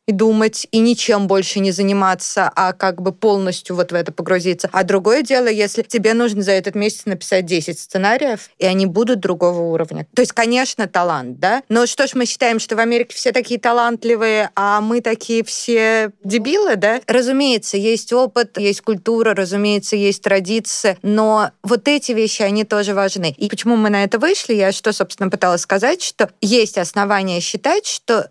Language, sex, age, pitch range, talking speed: Russian, female, 20-39, 195-240 Hz, 180 wpm